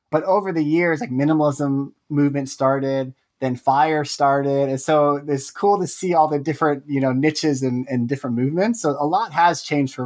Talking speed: 195 wpm